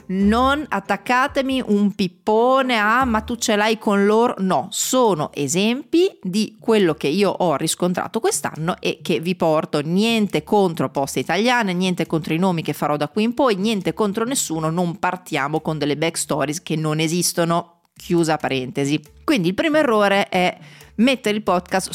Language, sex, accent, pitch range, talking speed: Italian, female, native, 155-215 Hz, 165 wpm